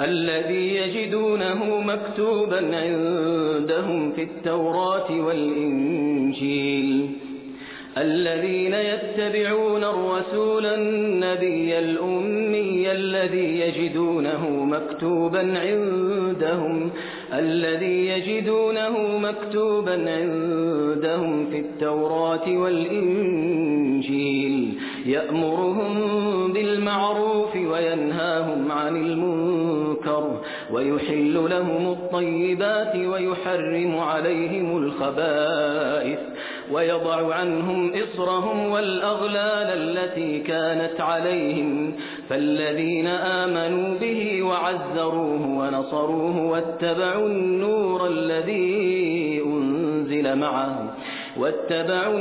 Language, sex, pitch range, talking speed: Persian, male, 155-190 Hz, 60 wpm